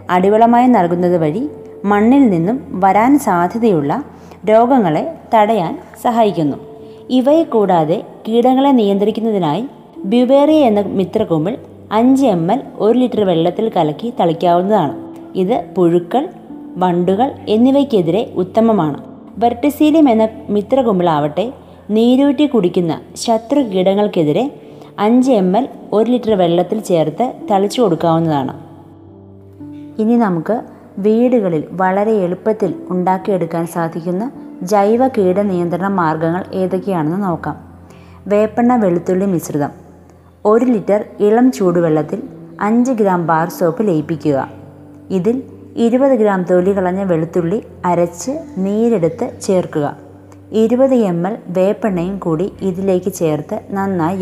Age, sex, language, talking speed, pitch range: 20-39, female, Malayalam, 95 wpm, 170-230 Hz